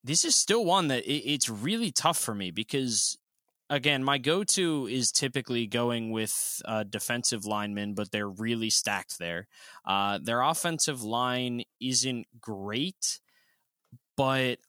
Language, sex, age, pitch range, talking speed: English, male, 20-39, 105-140 Hz, 140 wpm